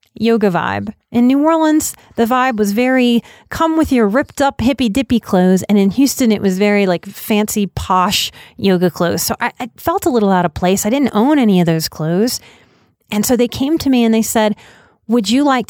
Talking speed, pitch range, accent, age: 215 wpm, 195-275 Hz, American, 30-49